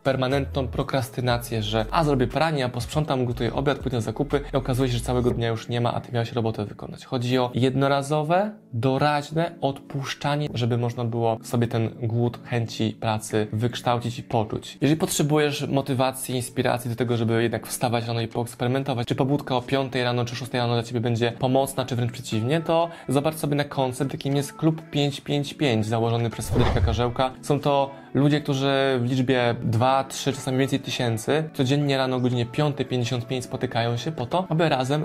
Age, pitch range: 20-39, 120-145 Hz